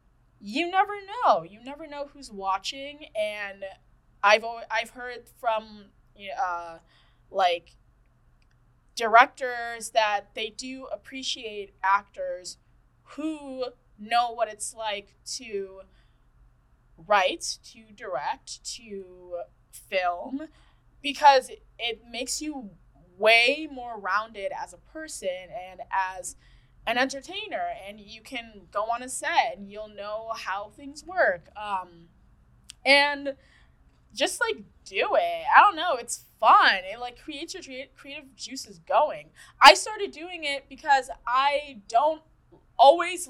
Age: 20-39